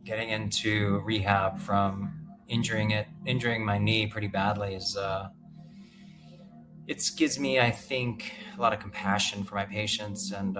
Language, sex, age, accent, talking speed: English, male, 30-49, American, 145 wpm